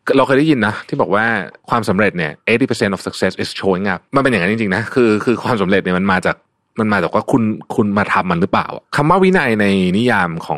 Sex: male